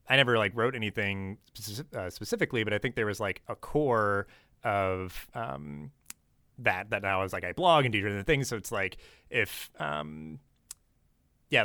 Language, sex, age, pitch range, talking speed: English, male, 30-49, 95-120 Hz, 175 wpm